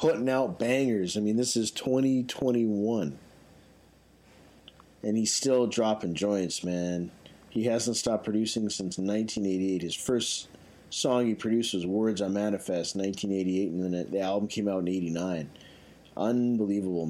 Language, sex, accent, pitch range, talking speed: English, male, American, 95-110 Hz, 135 wpm